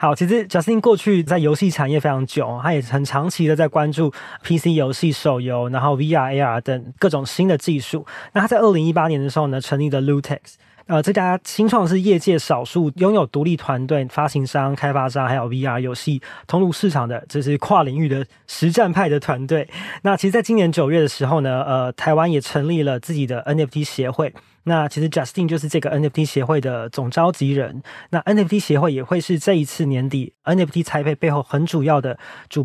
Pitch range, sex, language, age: 140-170 Hz, male, Chinese, 20-39